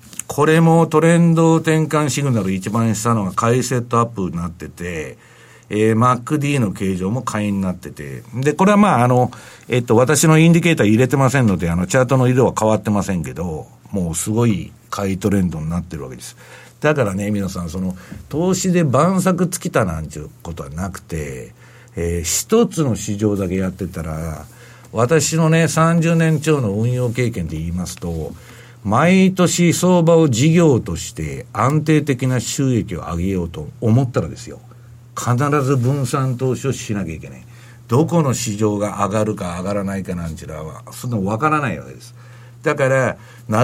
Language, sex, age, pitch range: Japanese, male, 60-79, 100-145 Hz